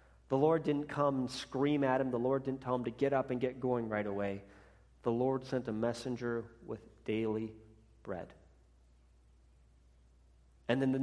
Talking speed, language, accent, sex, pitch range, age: 175 wpm, English, American, male, 105-140 Hz, 40-59